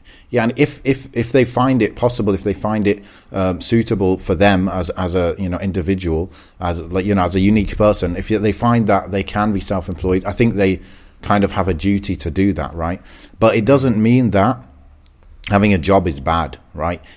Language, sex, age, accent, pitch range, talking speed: English, male, 30-49, British, 90-105 Hz, 215 wpm